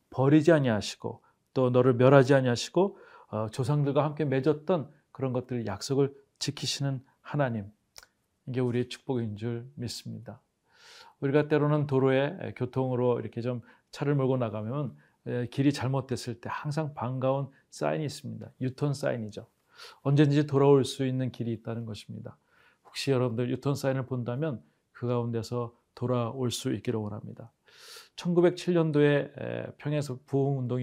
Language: Korean